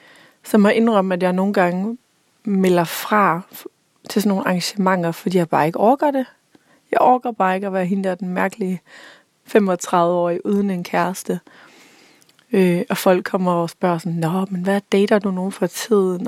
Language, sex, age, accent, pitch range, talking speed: Danish, female, 30-49, native, 185-220 Hz, 185 wpm